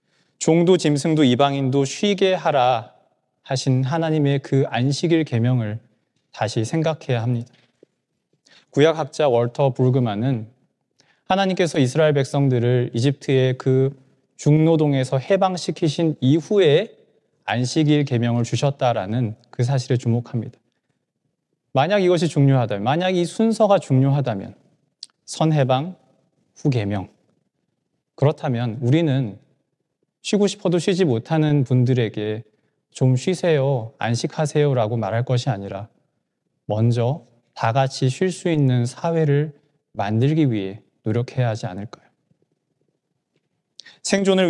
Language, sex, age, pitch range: Korean, male, 20-39, 120-155 Hz